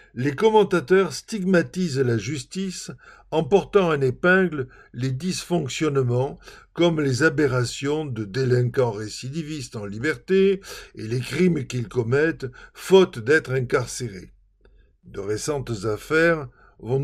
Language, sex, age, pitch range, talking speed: French, male, 50-69, 120-170 Hz, 110 wpm